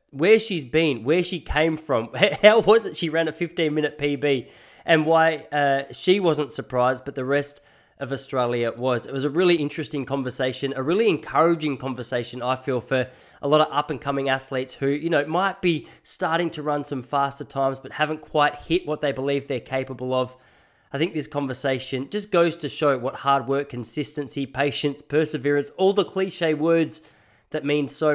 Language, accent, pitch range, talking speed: English, Australian, 135-160 Hz, 190 wpm